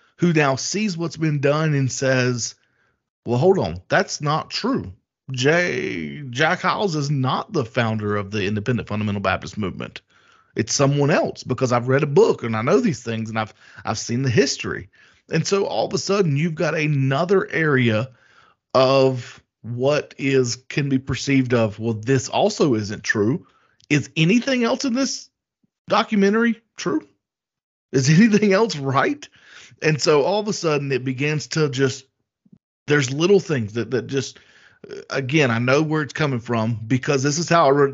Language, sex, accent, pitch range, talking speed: English, male, American, 115-160 Hz, 170 wpm